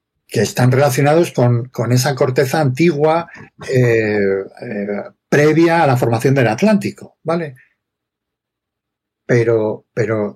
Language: Spanish